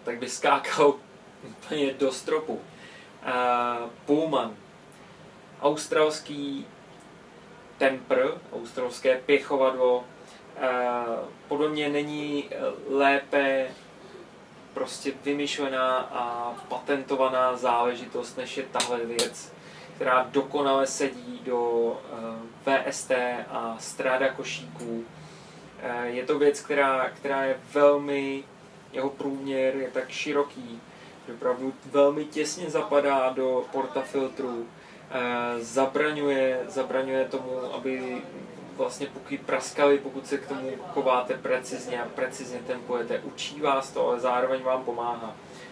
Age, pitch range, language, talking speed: 20-39, 125-140 Hz, Czech, 95 wpm